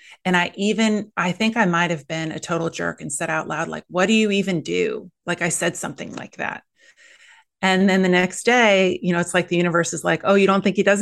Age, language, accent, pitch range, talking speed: 30-49, English, American, 175-220 Hz, 250 wpm